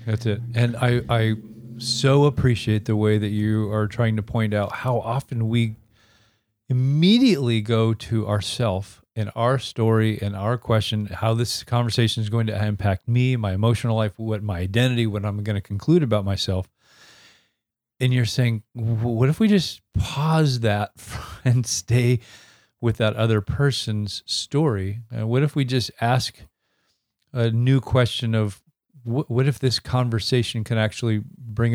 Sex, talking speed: male, 155 wpm